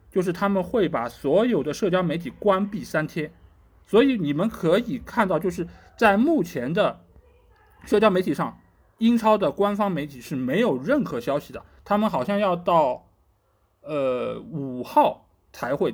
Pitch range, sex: 145-215 Hz, male